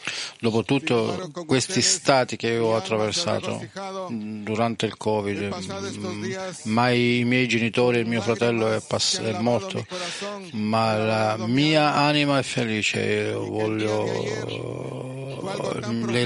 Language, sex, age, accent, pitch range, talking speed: Italian, male, 40-59, native, 110-145 Hz, 105 wpm